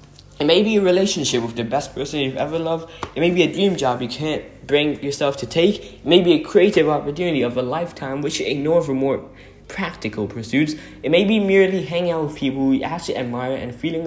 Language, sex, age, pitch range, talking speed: English, male, 10-29, 110-160 Hz, 230 wpm